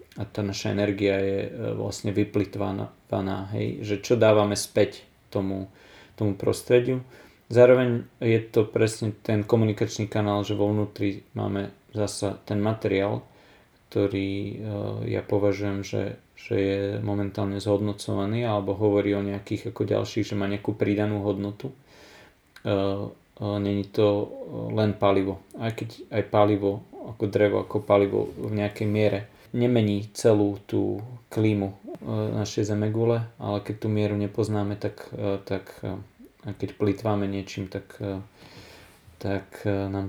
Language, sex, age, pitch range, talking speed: Slovak, male, 30-49, 100-110 Hz, 125 wpm